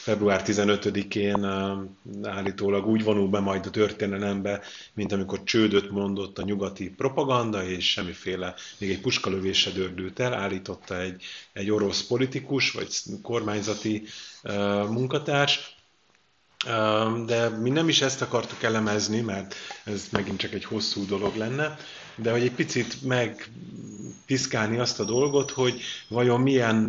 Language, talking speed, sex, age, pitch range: Hungarian, 130 wpm, male, 30-49, 100-115 Hz